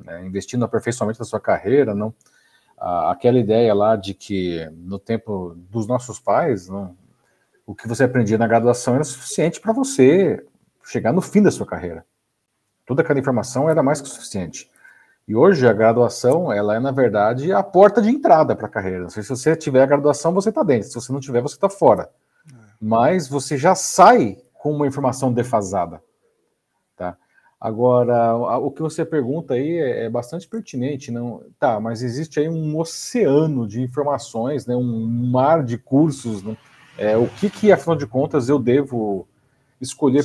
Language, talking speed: Portuguese, 170 wpm